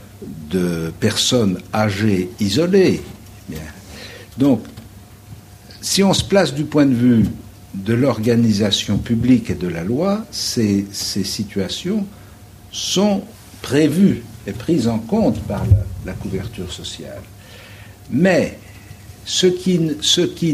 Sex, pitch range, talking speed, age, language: male, 100-125 Hz, 110 wpm, 60-79, French